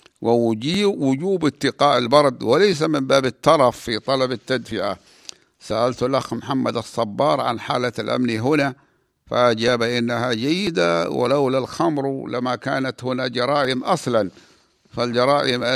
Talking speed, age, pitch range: 110 wpm, 60-79, 120-135 Hz